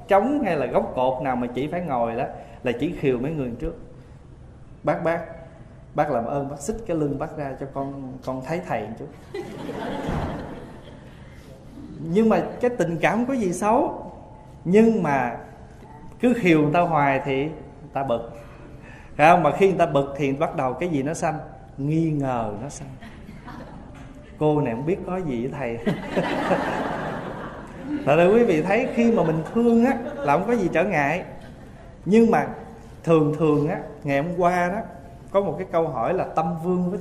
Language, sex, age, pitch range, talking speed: Vietnamese, male, 20-39, 140-195 Hz, 180 wpm